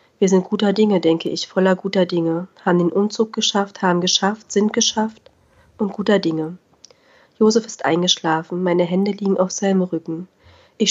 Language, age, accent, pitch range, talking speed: German, 30-49, German, 175-210 Hz, 165 wpm